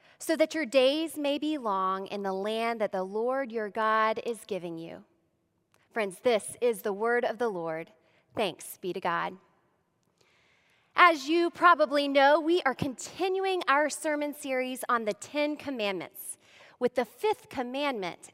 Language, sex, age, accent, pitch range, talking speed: English, female, 20-39, American, 220-290 Hz, 155 wpm